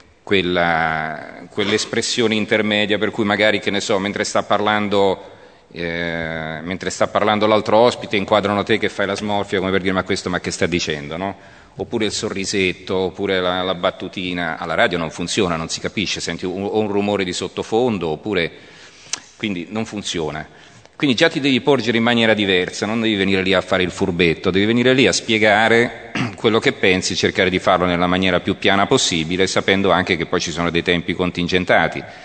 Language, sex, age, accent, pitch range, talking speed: Italian, male, 40-59, native, 85-105 Hz, 185 wpm